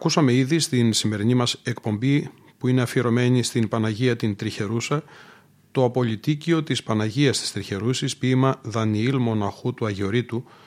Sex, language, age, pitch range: male, Greek, 40-59, 110-135 Hz